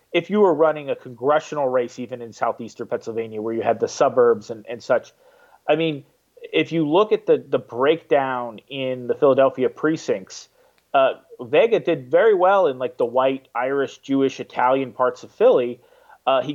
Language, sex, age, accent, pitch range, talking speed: English, male, 30-49, American, 125-165 Hz, 180 wpm